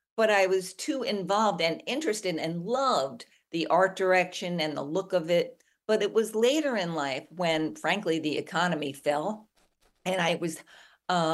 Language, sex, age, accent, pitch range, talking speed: English, female, 50-69, American, 170-220 Hz, 170 wpm